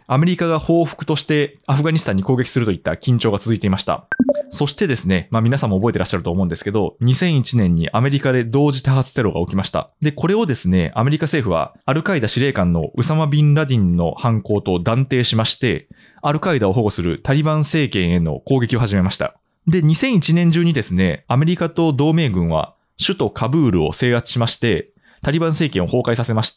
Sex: male